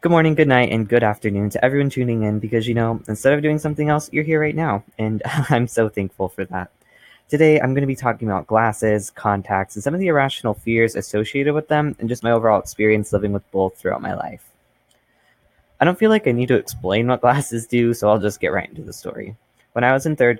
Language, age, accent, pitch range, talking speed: English, 20-39, American, 100-130 Hz, 240 wpm